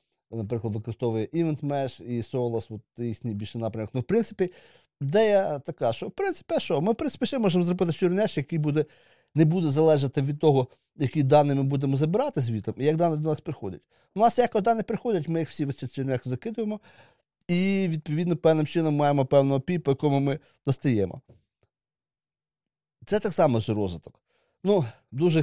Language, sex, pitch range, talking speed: Ukrainian, male, 120-175 Hz, 175 wpm